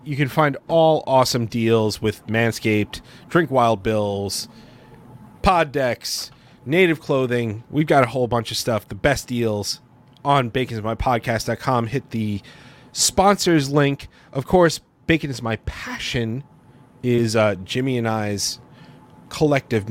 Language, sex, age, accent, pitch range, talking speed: English, male, 30-49, American, 110-140 Hz, 130 wpm